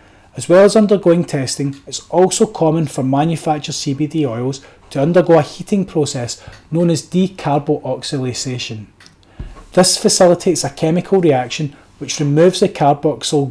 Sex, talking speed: male, 130 wpm